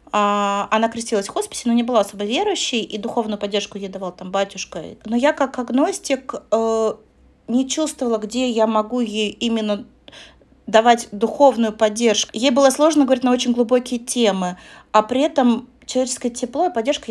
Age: 30-49